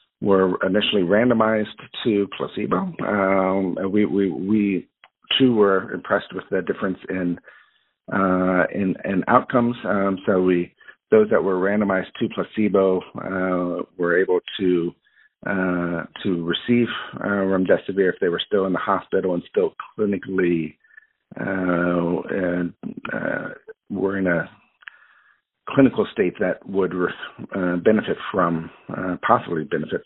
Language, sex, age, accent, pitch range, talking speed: English, male, 50-69, American, 90-105 Hz, 130 wpm